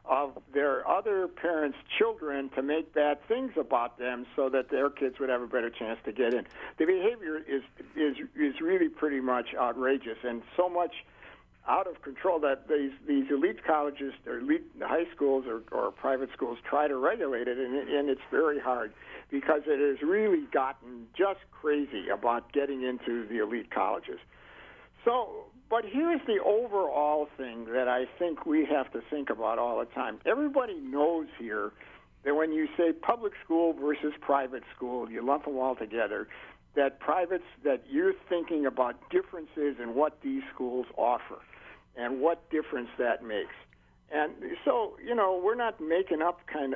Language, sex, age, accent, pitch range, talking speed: English, male, 60-79, American, 135-210 Hz, 170 wpm